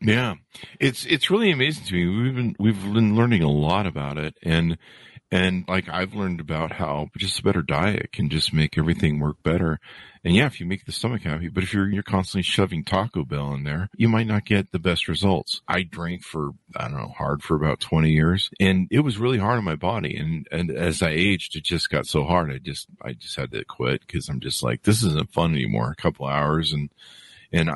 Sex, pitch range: male, 80-105 Hz